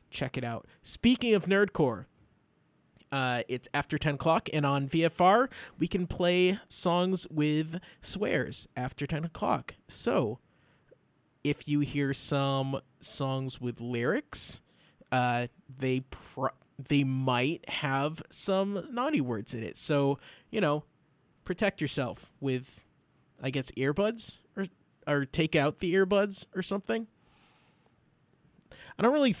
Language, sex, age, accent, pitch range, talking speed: English, male, 20-39, American, 130-175 Hz, 125 wpm